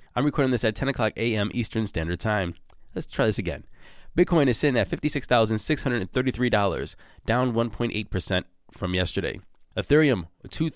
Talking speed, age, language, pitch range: 135 wpm, 20-39, English, 100-130 Hz